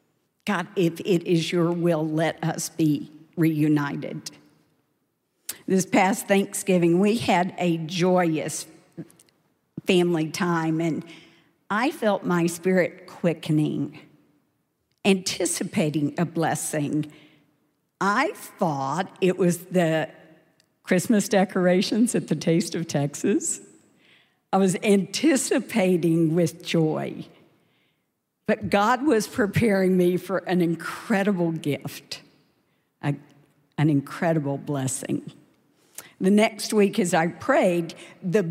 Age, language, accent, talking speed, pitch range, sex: 50-69, English, American, 100 wpm, 160-195 Hz, female